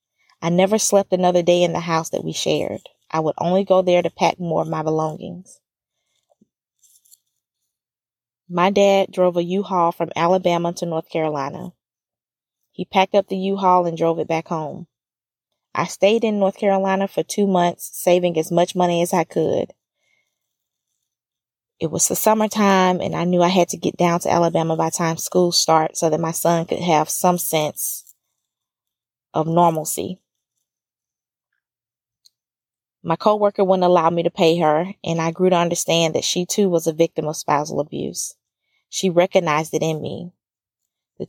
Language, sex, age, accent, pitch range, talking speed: English, female, 20-39, American, 155-180 Hz, 165 wpm